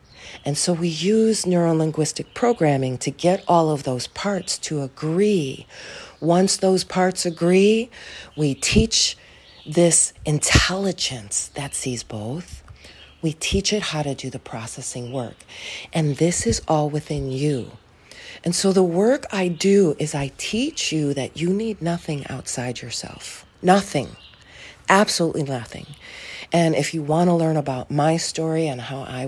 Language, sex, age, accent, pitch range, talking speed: English, female, 40-59, American, 140-180 Hz, 145 wpm